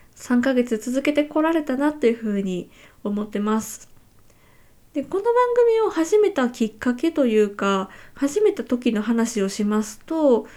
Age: 20-39